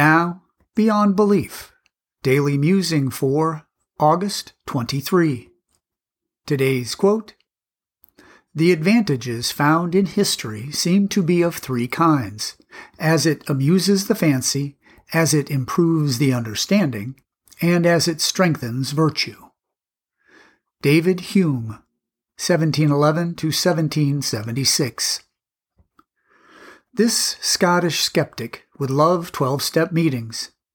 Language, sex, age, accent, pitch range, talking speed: English, male, 50-69, American, 140-180 Hz, 95 wpm